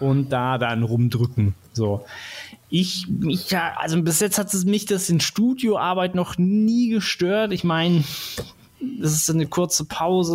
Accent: German